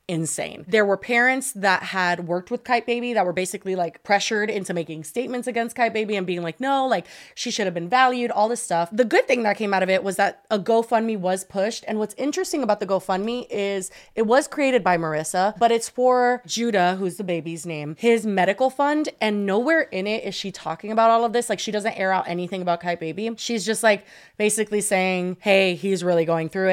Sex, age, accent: female, 20-39, American